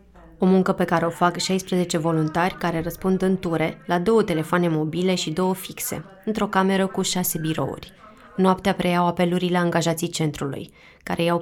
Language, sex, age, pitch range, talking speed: Romanian, female, 20-39, 165-185 Hz, 165 wpm